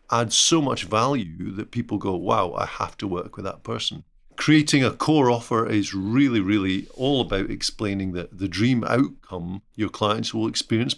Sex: male